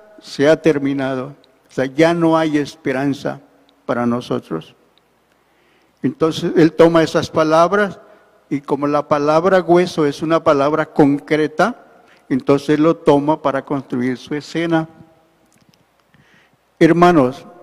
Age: 60-79